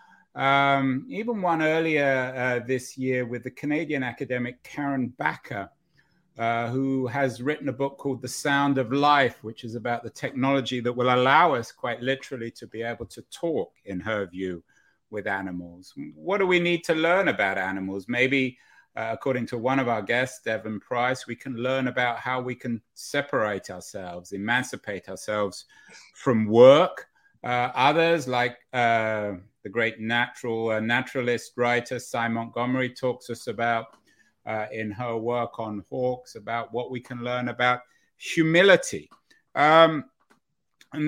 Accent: British